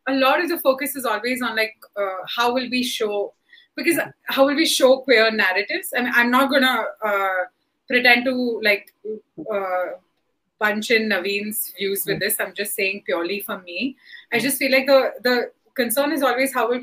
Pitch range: 235-300 Hz